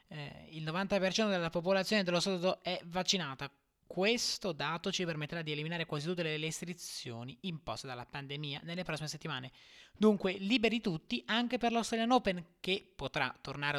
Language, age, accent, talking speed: Italian, 20-39, native, 150 wpm